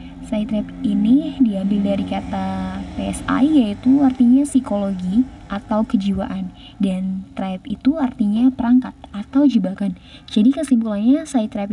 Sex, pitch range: female, 200-245 Hz